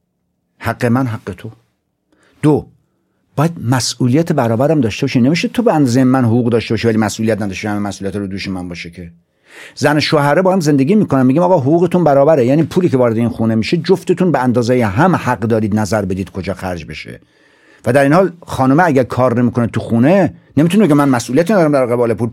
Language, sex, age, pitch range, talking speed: Persian, male, 50-69, 110-145 Hz, 200 wpm